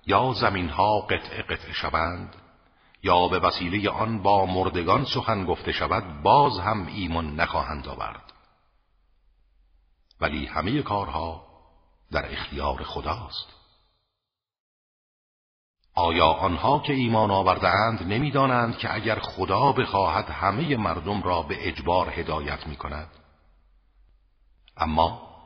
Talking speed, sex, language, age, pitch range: 105 wpm, male, Persian, 50-69, 75-100 Hz